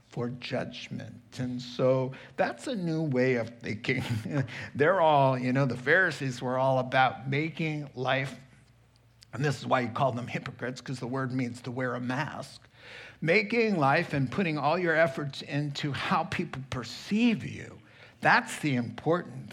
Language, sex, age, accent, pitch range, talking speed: English, male, 60-79, American, 120-155 Hz, 160 wpm